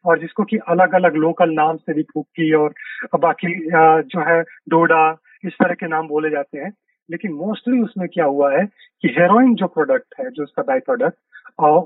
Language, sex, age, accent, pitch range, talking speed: Hindi, male, 40-59, native, 170-230 Hz, 180 wpm